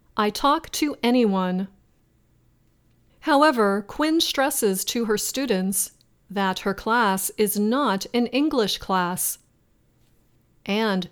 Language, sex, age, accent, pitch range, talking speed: English, female, 40-59, American, 190-240 Hz, 105 wpm